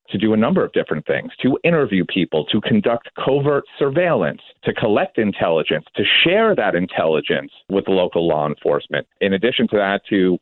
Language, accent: English, American